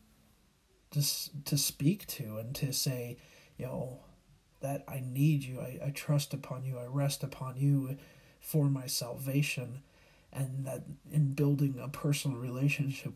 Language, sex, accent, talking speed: English, male, American, 140 wpm